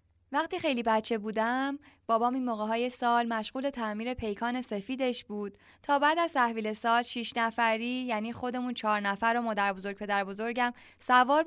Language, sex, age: Persian, female, 20-39